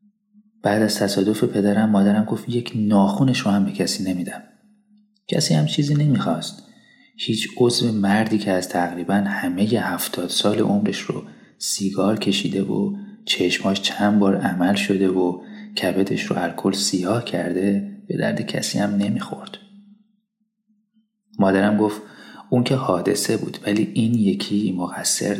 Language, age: Persian, 30-49